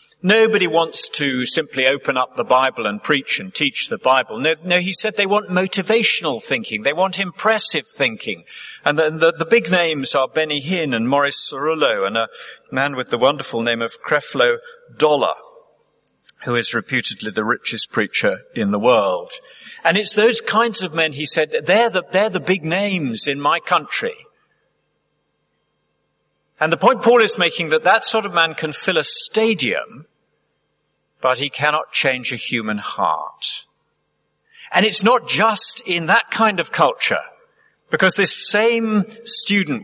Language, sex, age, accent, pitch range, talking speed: English, male, 50-69, British, 135-220 Hz, 165 wpm